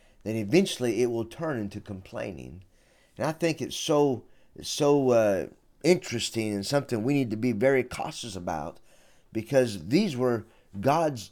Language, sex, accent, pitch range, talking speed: English, male, American, 105-150 Hz, 150 wpm